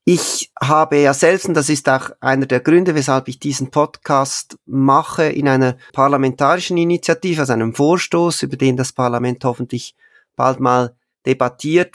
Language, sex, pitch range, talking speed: German, male, 125-150 Hz, 150 wpm